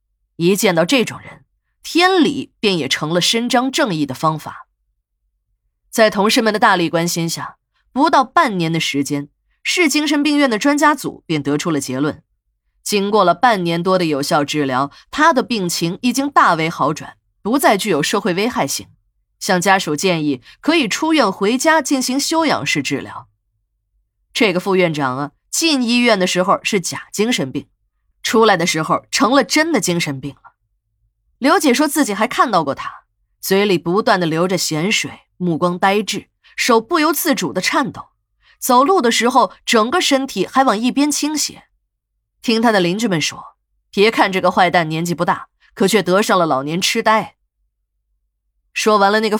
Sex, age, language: female, 20-39, Chinese